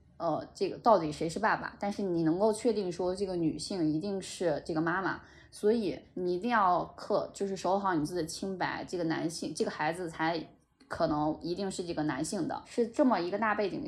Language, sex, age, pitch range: Chinese, female, 20-39, 160-200 Hz